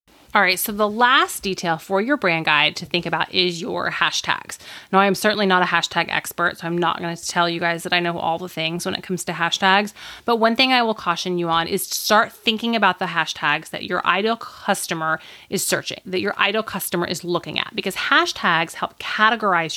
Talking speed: 225 wpm